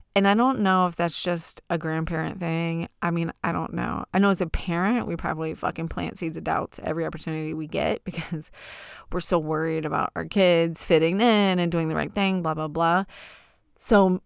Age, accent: 20-39, American